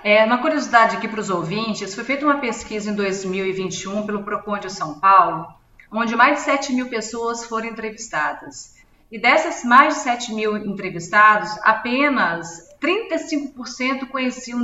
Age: 40-59